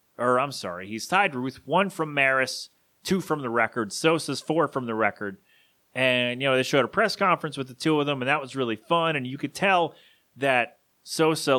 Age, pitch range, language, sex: 30-49, 125-160 Hz, English, male